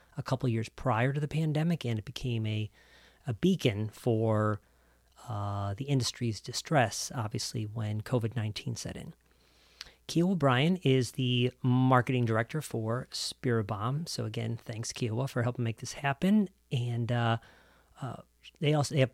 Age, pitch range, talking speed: 40-59, 115-145 Hz, 150 wpm